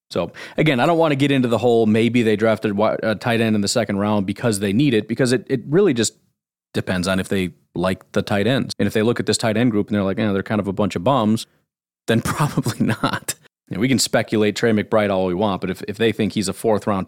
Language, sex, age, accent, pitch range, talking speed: English, male, 30-49, American, 95-115 Hz, 280 wpm